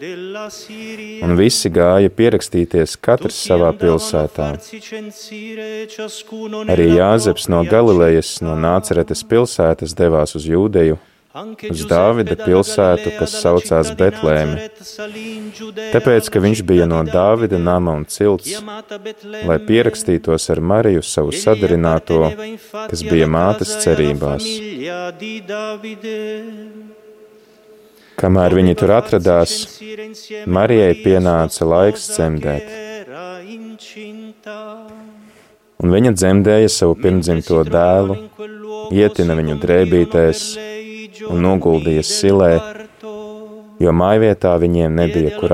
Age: 30-49